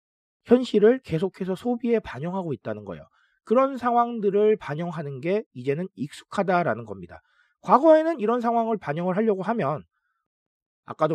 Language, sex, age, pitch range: Korean, male, 40-59, 140-225 Hz